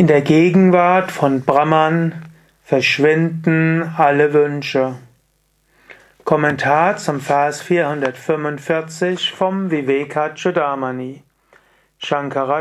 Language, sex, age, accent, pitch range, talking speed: German, male, 40-59, German, 145-175 Hz, 75 wpm